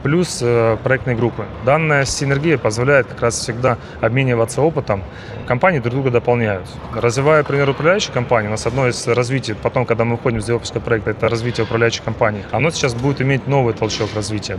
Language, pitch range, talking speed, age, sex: Russian, 115-135 Hz, 175 wpm, 30-49, male